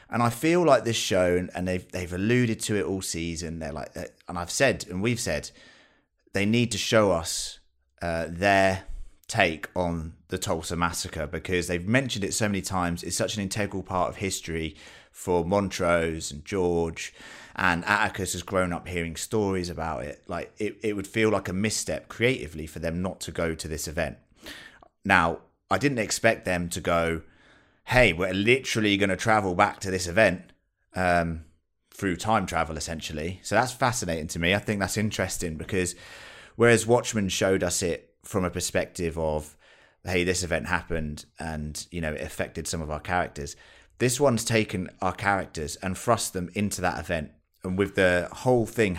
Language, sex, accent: English, male, British